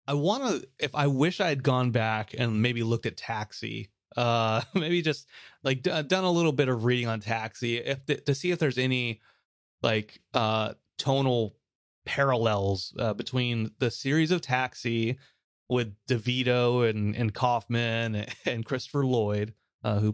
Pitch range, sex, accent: 105-140 Hz, male, American